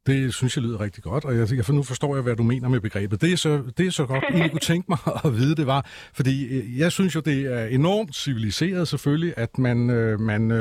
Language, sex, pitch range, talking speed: Danish, male, 120-160 Hz, 255 wpm